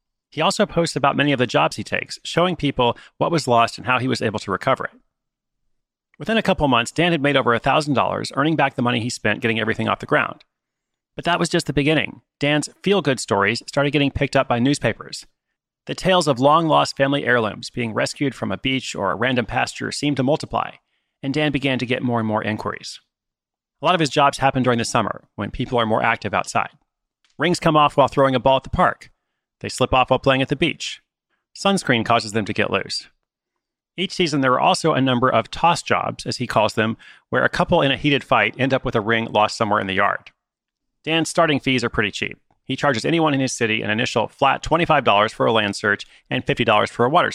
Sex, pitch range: male, 115-145 Hz